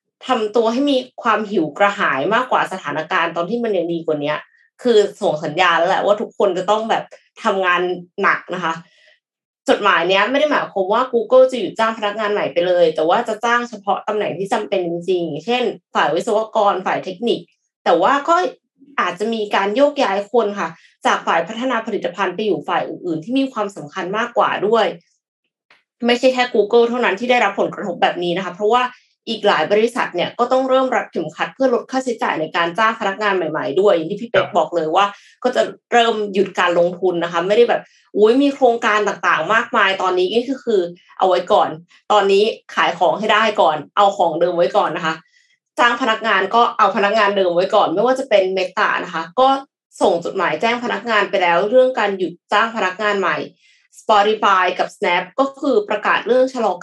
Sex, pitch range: female, 180-240 Hz